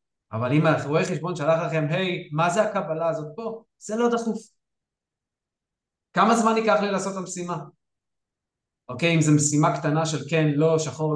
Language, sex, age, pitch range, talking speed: Hebrew, male, 20-39, 135-170 Hz, 170 wpm